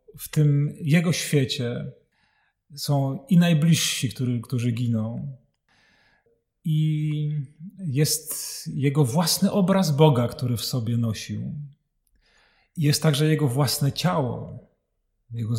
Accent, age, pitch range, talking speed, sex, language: native, 40-59, 125-175 Hz, 105 wpm, male, Polish